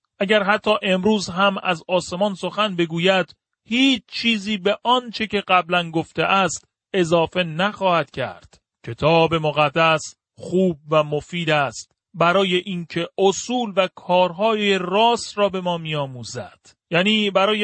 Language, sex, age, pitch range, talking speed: Persian, male, 40-59, 155-190 Hz, 130 wpm